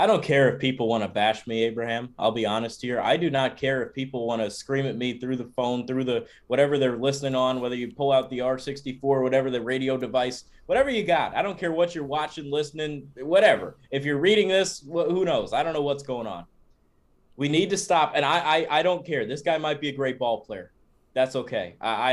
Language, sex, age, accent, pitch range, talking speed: English, male, 20-39, American, 120-140 Hz, 245 wpm